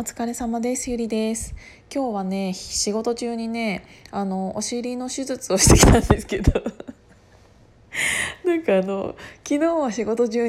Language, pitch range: Japanese, 195-320 Hz